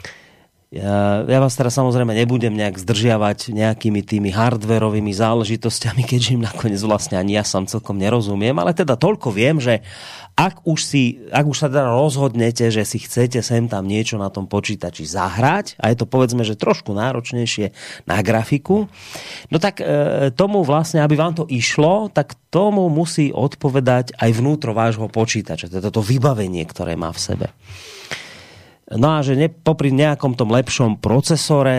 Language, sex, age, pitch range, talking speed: Slovak, male, 30-49, 105-140 Hz, 155 wpm